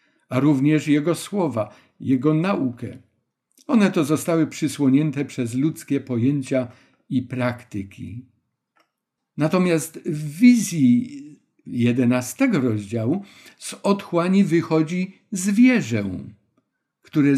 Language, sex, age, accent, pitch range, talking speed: Polish, male, 50-69, native, 125-165 Hz, 85 wpm